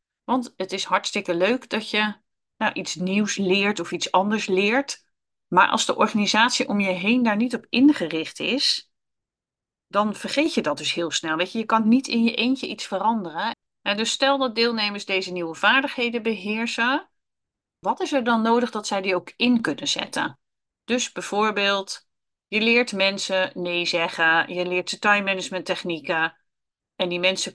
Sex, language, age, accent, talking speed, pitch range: female, Dutch, 40-59, Dutch, 170 wpm, 180-225 Hz